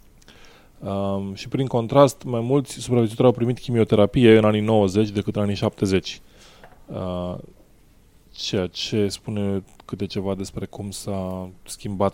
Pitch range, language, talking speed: 95-110 Hz, English, 125 wpm